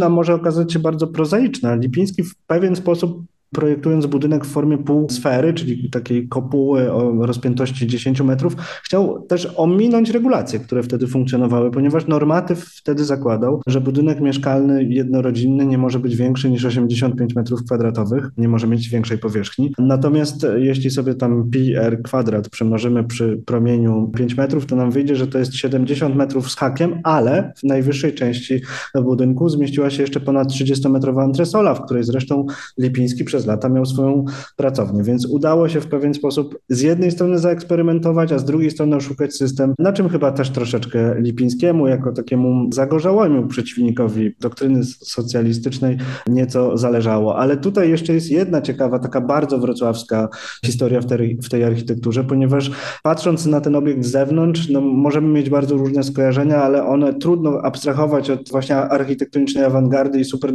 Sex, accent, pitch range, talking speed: male, native, 125-150 Hz, 160 wpm